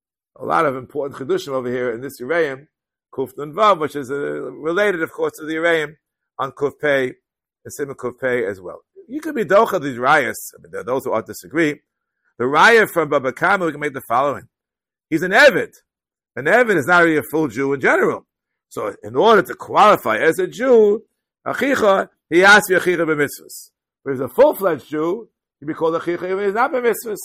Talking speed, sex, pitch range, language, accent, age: 205 wpm, male, 145-200 Hz, English, American, 50-69